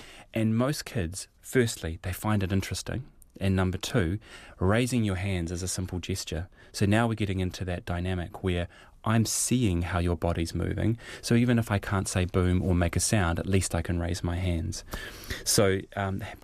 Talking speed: 190 wpm